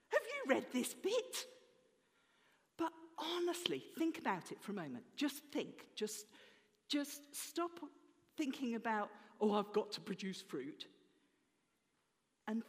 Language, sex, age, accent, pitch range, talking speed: English, female, 50-69, British, 210-335 Hz, 120 wpm